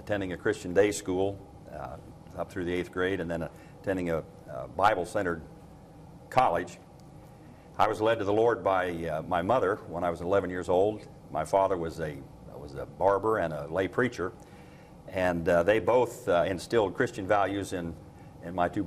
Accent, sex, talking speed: American, male, 185 wpm